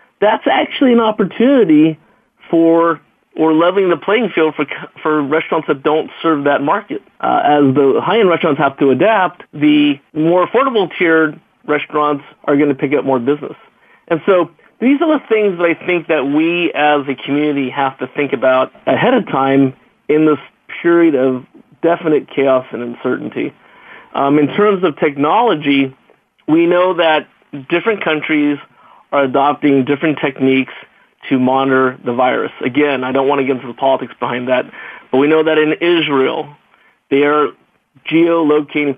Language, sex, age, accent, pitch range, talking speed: English, male, 40-59, American, 135-170 Hz, 160 wpm